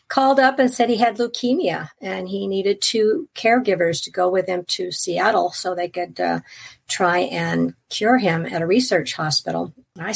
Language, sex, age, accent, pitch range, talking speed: English, female, 50-69, American, 175-210 Hz, 190 wpm